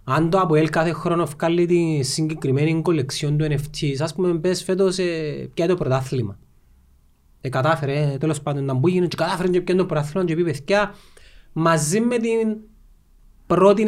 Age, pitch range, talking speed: 30-49, 130-180 Hz, 160 wpm